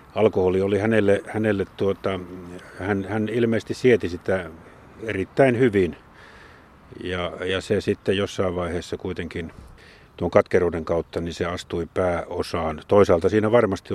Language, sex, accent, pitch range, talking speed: Finnish, male, native, 85-100 Hz, 125 wpm